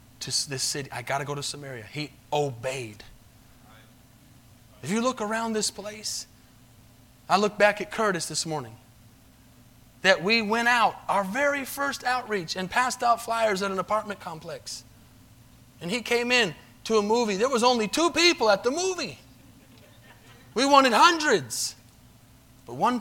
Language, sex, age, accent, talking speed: English, male, 30-49, American, 155 wpm